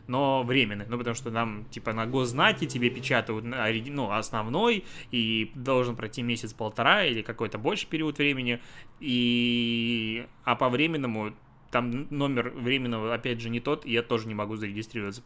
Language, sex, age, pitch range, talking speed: Russian, male, 20-39, 120-150 Hz, 155 wpm